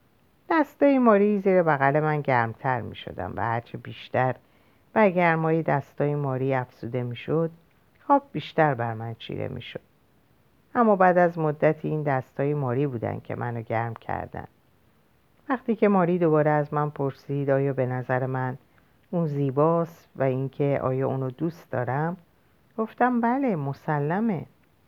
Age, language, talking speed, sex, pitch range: 50-69, Persian, 140 wpm, female, 125-160 Hz